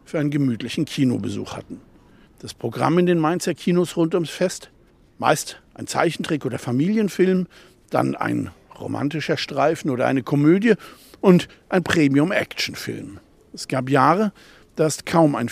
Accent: German